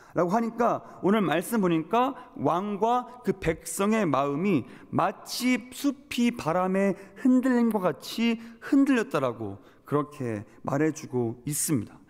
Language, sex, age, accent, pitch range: Korean, male, 30-49, native, 160-235 Hz